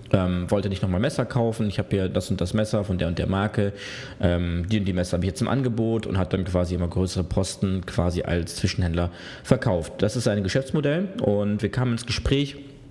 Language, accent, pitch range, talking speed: German, German, 95-115 Hz, 220 wpm